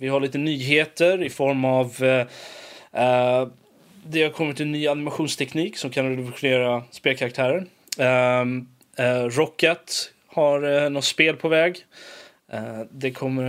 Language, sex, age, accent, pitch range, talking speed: Swedish, male, 20-39, native, 125-150 Hz, 135 wpm